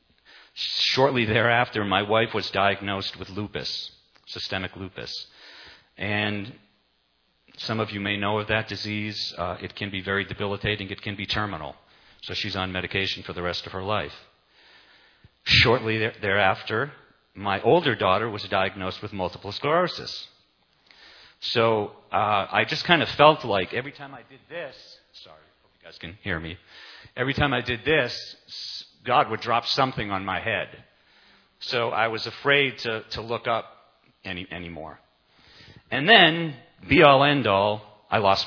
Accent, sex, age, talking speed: American, male, 40-59, 155 wpm